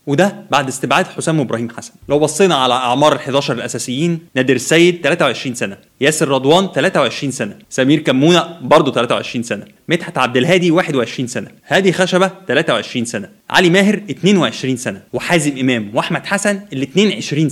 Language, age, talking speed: Arabic, 20-39, 150 wpm